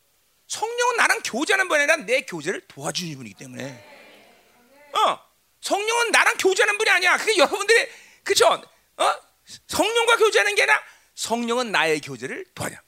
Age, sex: 40-59, male